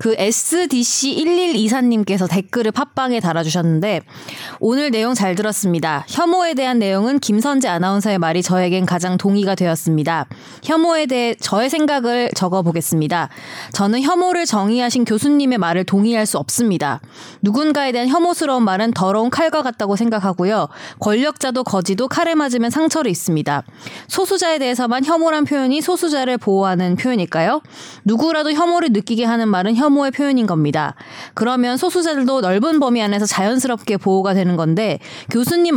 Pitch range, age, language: 190-270 Hz, 20-39, Korean